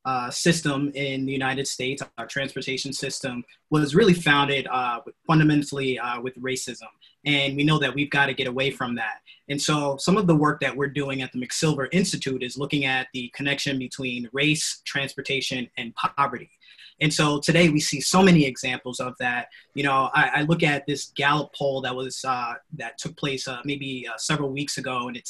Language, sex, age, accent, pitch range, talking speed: English, male, 20-39, American, 130-150 Hz, 200 wpm